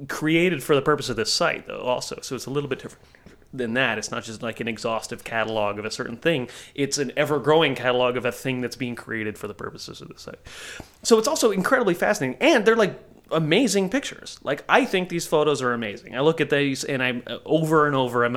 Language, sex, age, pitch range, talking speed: English, male, 30-49, 120-160 Hz, 230 wpm